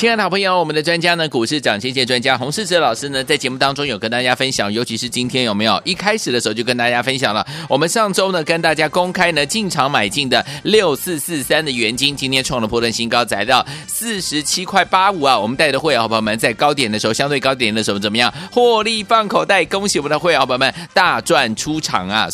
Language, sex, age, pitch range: Chinese, male, 30-49, 125-175 Hz